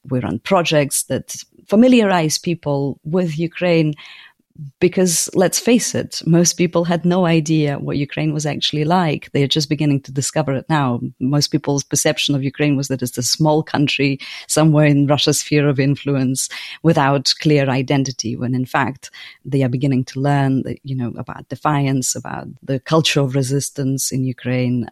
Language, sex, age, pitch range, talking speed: English, female, 30-49, 130-155 Hz, 170 wpm